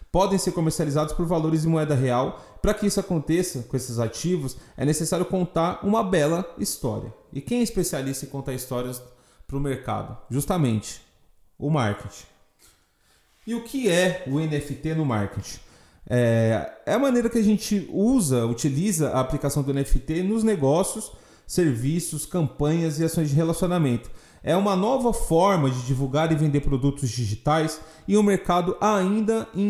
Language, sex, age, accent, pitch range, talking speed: Portuguese, male, 30-49, Brazilian, 130-185 Hz, 155 wpm